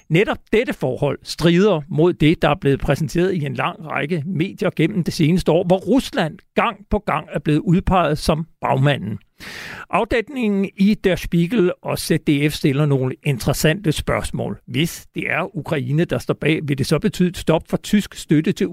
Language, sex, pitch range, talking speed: Danish, male, 150-195 Hz, 175 wpm